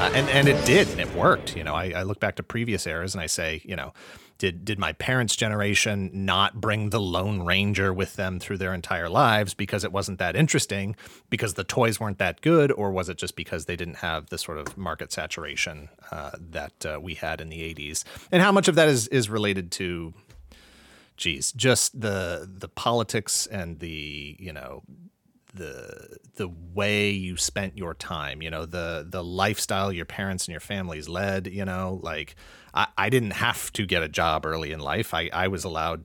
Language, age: English, 30-49